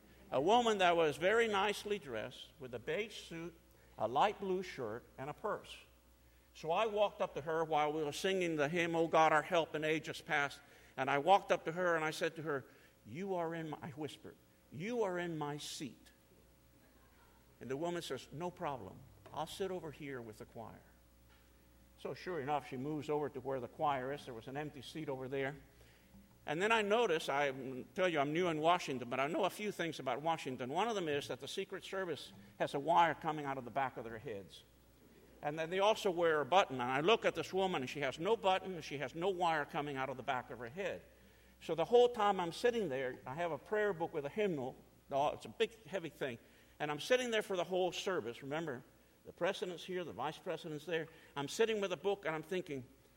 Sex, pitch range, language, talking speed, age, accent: male, 135-185 Hz, English, 230 wpm, 50-69, American